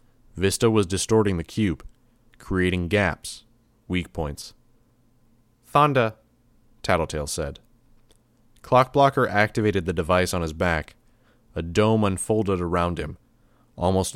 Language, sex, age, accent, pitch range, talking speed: English, male, 30-49, American, 90-115 Hz, 105 wpm